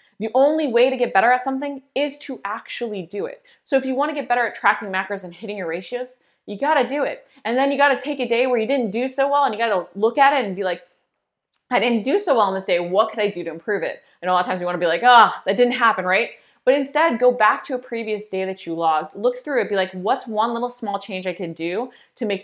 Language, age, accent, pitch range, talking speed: English, 20-39, American, 180-250 Hz, 290 wpm